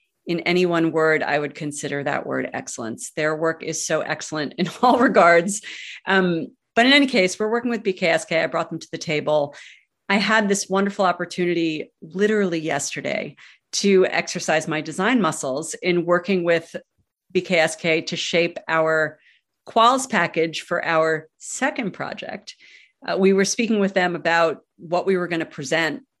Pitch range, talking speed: 160-195 Hz, 165 wpm